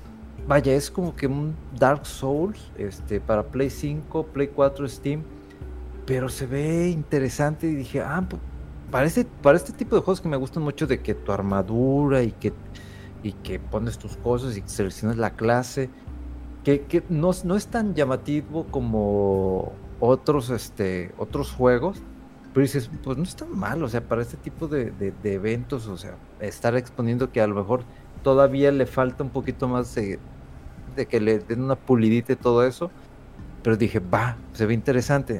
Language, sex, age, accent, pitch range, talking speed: Spanish, male, 40-59, Mexican, 105-140 Hz, 180 wpm